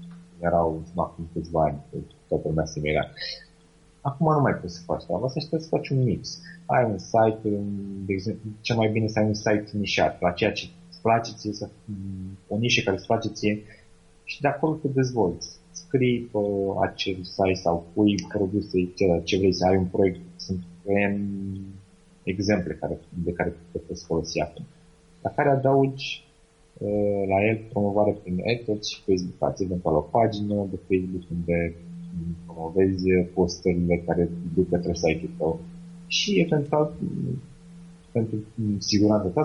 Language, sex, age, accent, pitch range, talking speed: Romanian, male, 30-49, native, 90-115 Hz, 155 wpm